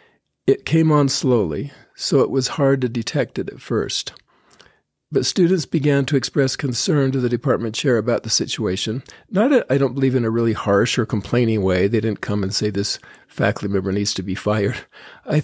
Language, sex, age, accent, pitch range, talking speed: English, male, 50-69, American, 110-135 Hz, 195 wpm